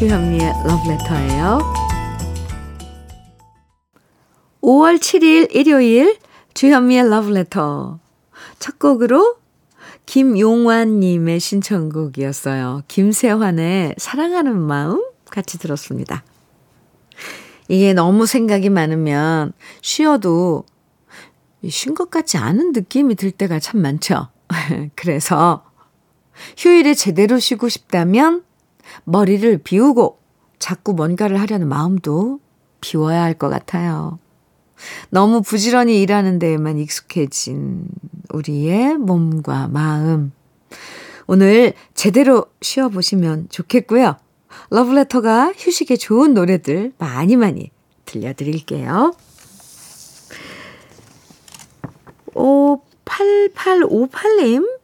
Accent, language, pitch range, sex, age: native, Korean, 160-260 Hz, female, 50-69